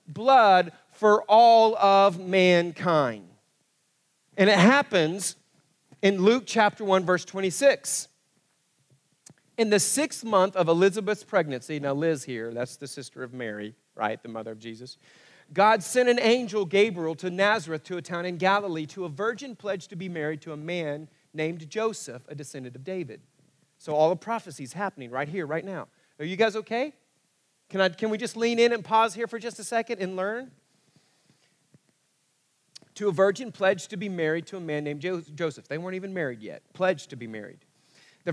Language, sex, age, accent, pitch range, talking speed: English, male, 40-59, American, 155-215 Hz, 180 wpm